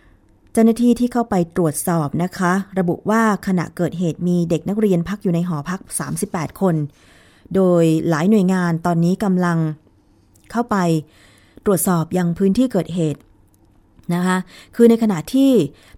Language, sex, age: Thai, female, 20-39